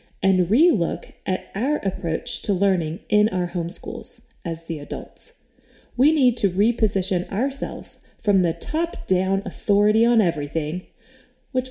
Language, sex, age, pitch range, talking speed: English, female, 30-49, 170-225 Hz, 130 wpm